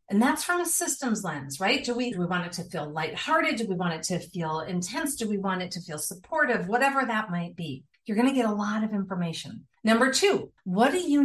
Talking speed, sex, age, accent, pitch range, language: 250 wpm, female, 40-59, American, 190-250 Hz, English